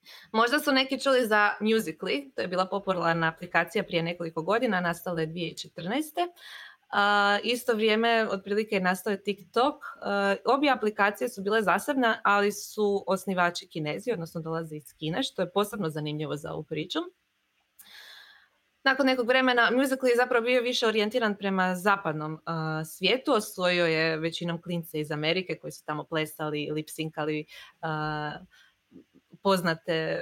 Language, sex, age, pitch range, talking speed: Croatian, female, 20-39, 165-230 Hz, 140 wpm